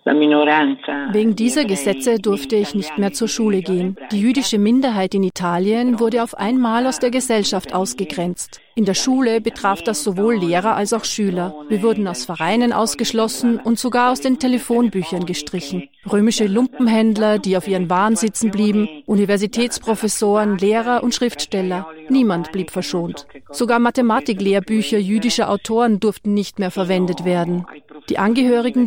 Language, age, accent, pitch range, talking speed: French, 40-59, German, 185-230 Hz, 145 wpm